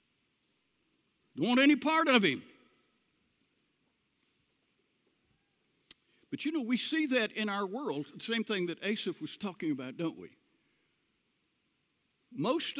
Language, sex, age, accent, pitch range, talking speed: English, male, 60-79, American, 200-270 Hz, 120 wpm